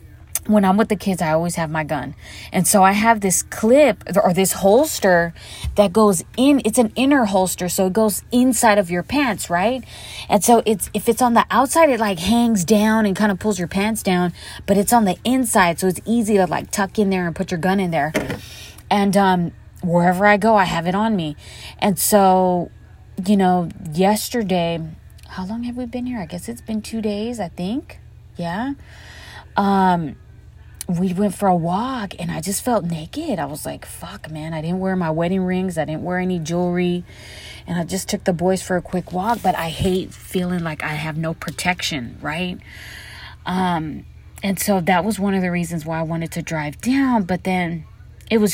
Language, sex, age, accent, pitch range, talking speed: English, female, 20-39, American, 165-210 Hz, 210 wpm